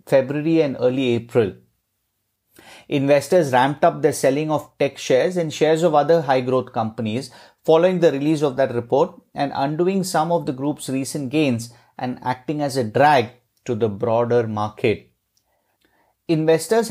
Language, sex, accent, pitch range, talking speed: English, male, Indian, 125-160 Hz, 150 wpm